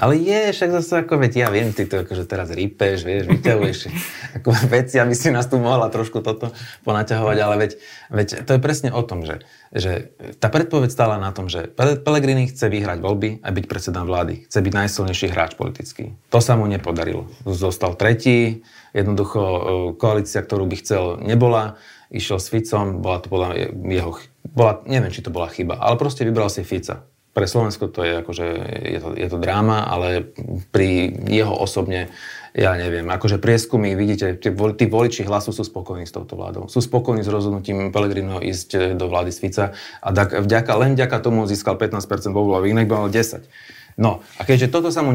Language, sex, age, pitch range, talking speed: Slovak, male, 30-49, 95-120 Hz, 180 wpm